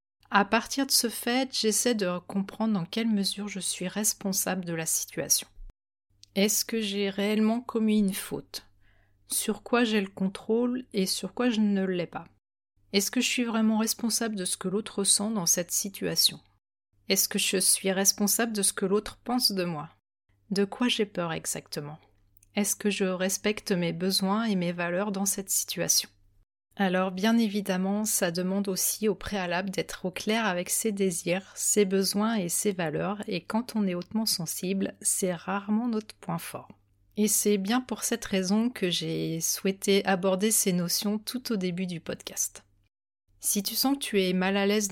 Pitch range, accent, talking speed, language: 175-215 Hz, French, 180 wpm, French